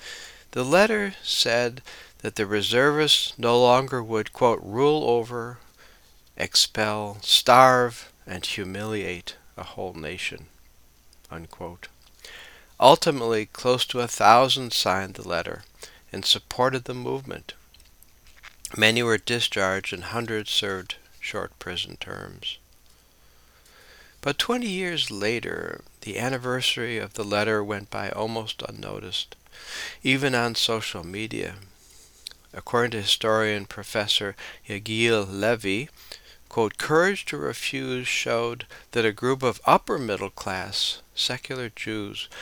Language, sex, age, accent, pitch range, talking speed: English, male, 60-79, American, 100-125 Hz, 110 wpm